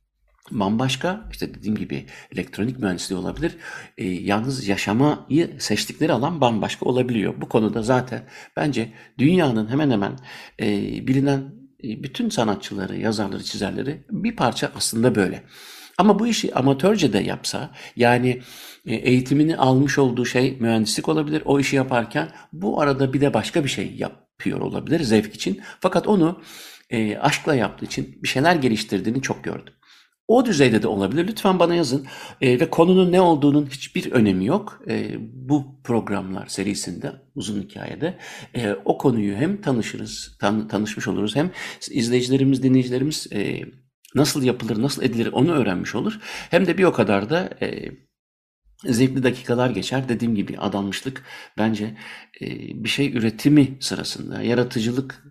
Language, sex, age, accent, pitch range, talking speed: Turkish, male, 60-79, native, 110-145 Hz, 140 wpm